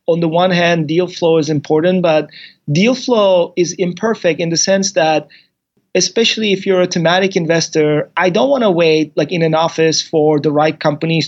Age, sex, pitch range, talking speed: 30-49, male, 155-180 Hz, 190 wpm